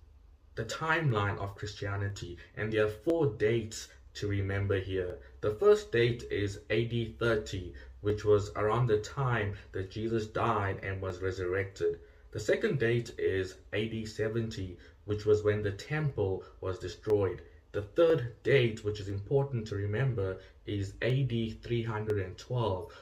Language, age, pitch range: English, 20-39, 95-120 Hz